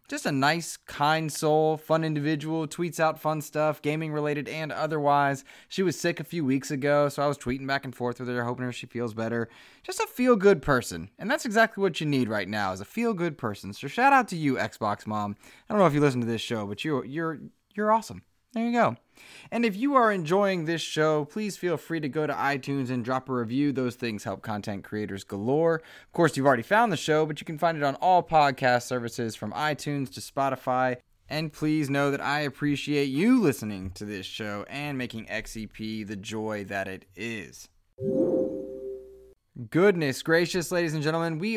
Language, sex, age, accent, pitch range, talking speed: English, male, 20-39, American, 120-160 Hz, 210 wpm